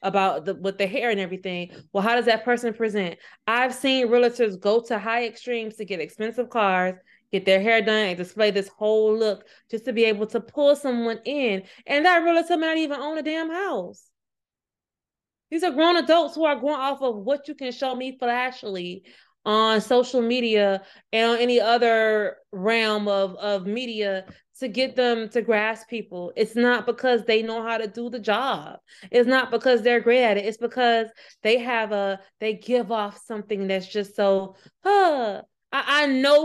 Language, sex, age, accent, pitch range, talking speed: English, female, 20-39, American, 200-250 Hz, 190 wpm